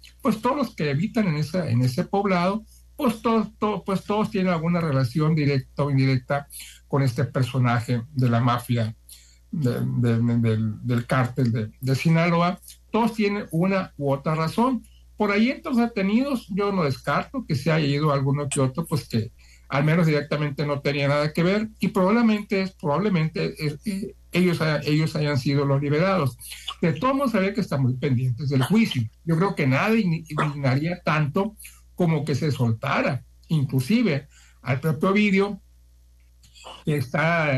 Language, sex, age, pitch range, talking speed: Spanish, male, 60-79, 130-190 Hz, 170 wpm